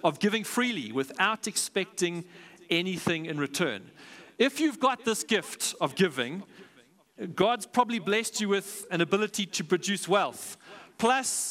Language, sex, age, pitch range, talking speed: English, male, 40-59, 175-220 Hz, 135 wpm